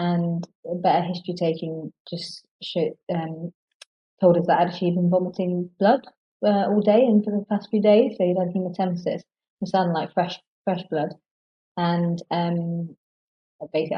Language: English